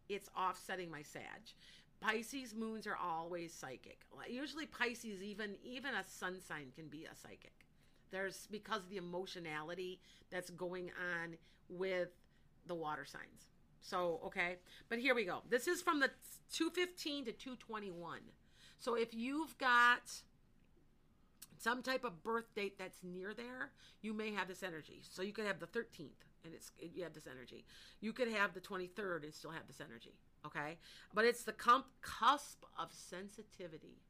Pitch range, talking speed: 180-230 Hz, 160 wpm